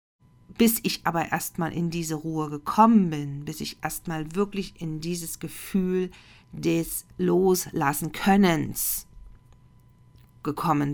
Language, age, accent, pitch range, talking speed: German, 40-59, German, 150-180 Hz, 105 wpm